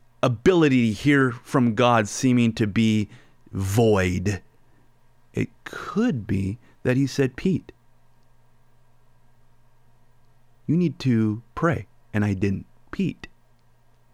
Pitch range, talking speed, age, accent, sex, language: 115-140 Hz, 100 wpm, 30-49, American, male, English